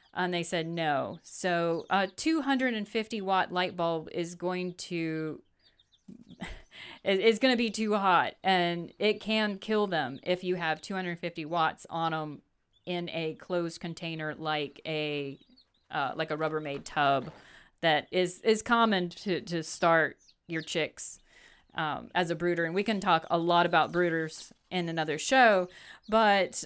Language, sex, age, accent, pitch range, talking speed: English, female, 40-59, American, 170-200 Hz, 165 wpm